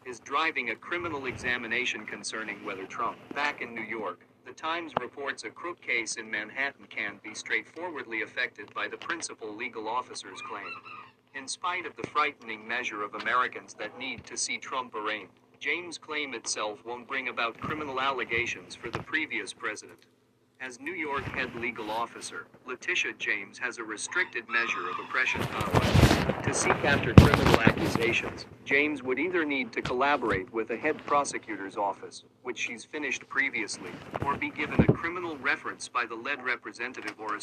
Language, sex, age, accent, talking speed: English, male, 40-59, American, 165 wpm